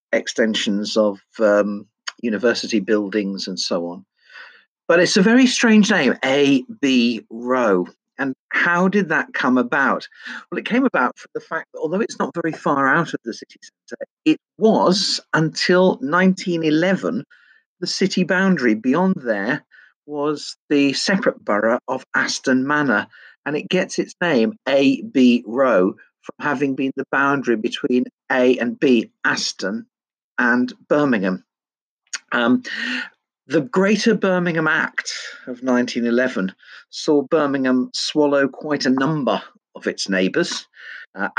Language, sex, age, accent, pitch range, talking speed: English, male, 50-69, British, 115-170 Hz, 135 wpm